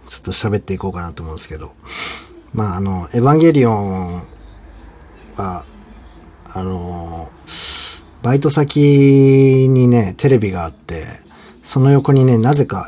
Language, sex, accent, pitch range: Japanese, male, native, 90-135 Hz